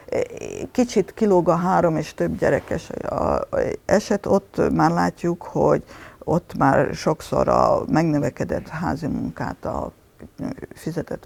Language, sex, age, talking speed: Hungarian, female, 50-69, 115 wpm